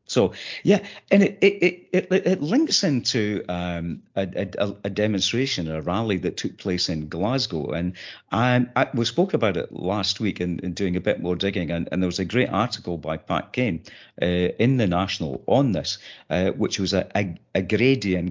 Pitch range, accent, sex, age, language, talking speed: 90-145 Hz, British, male, 50-69, English, 200 wpm